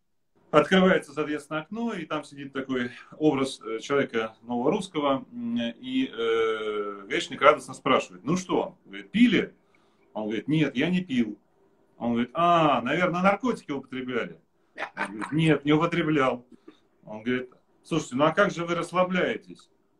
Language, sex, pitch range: Russian, male, 135-185 Hz